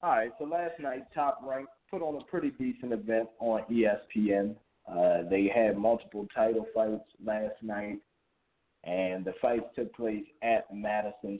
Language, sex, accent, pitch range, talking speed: English, male, American, 105-130 Hz, 160 wpm